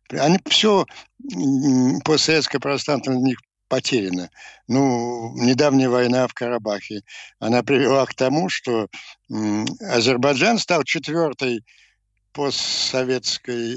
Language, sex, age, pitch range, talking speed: Ukrainian, male, 60-79, 115-145 Hz, 90 wpm